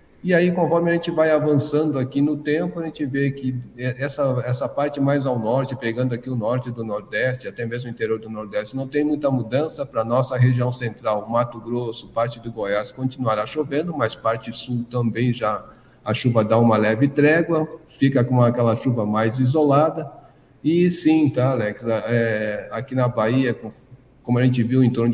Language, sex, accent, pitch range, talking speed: Portuguese, male, Brazilian, 115-145 Hz, 185 wpm